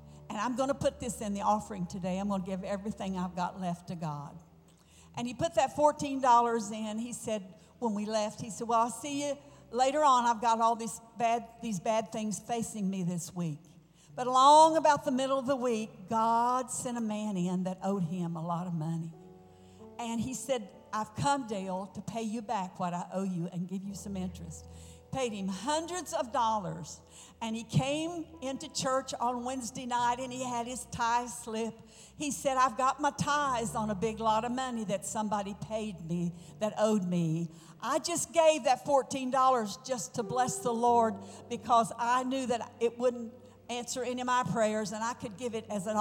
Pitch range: 190-255 Hz